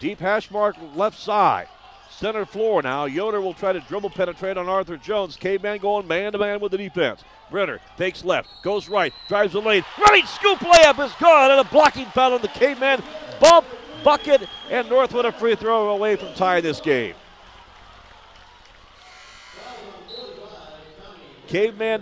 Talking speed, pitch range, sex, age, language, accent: 155 wpm, 175-225 Hz, male, 50-69, English, American